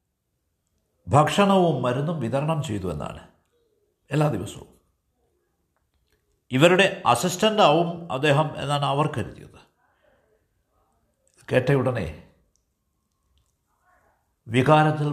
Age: 60-79